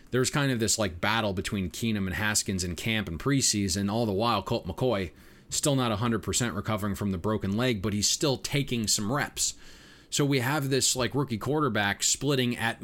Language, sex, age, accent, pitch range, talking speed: English, male, 30-49, American, 110-135 Hz, 205 wpm